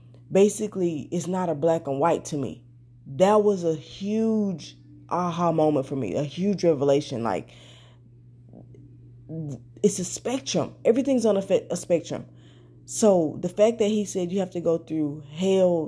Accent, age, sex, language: American, 20-39, female, English